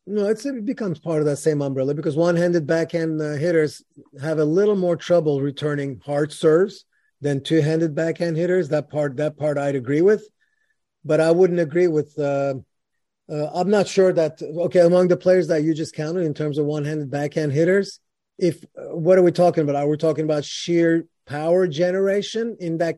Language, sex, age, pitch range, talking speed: English, male, 30-49, 150-175 Hz, 195 wpm